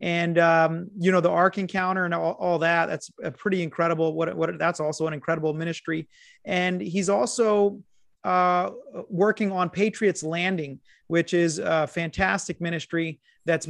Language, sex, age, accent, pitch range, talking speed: English, male, 30-49, American, 160-185 Hz, 155 wpm